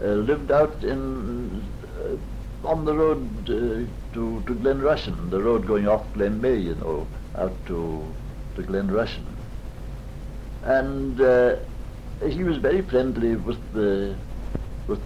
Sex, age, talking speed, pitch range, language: male, 60-79, 140 wpm, 100-130 Hz, English